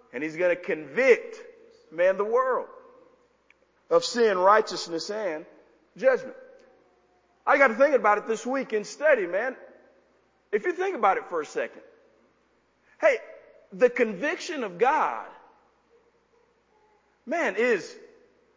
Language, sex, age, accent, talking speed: English, male, 40-59, American, 120 wpm